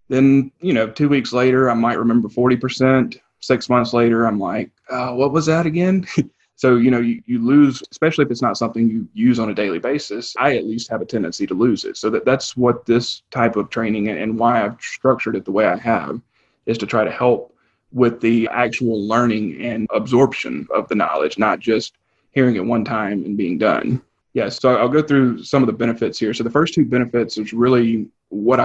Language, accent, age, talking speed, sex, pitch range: English, American, 30-49, 220 wpm, male, 110-130 Hz